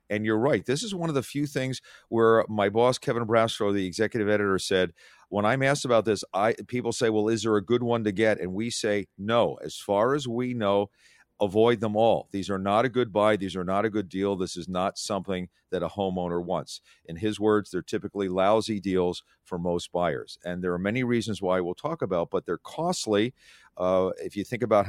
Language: English